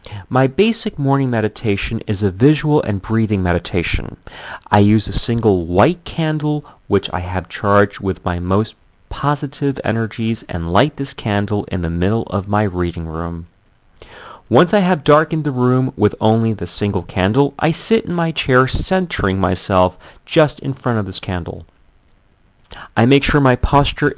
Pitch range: 95-135 Hz